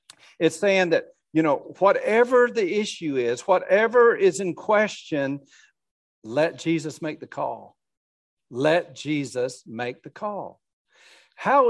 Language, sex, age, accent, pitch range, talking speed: English, male, 50-69, American, 160-220 Hz, 125 wpm